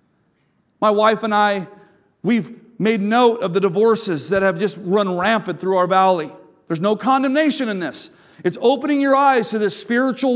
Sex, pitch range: male, 210-275 Hz